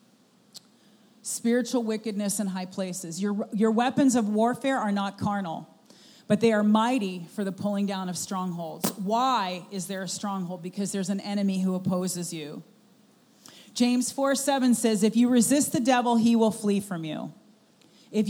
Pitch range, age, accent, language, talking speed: 195-240 Hz, 40-59, American, English, 165 wpm